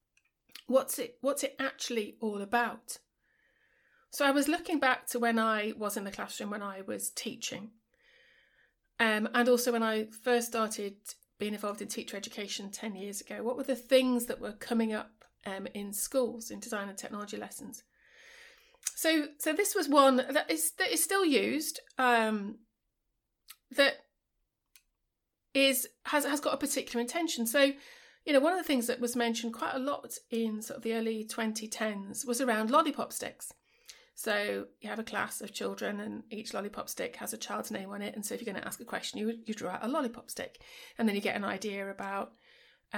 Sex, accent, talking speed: female, British, 190 wpm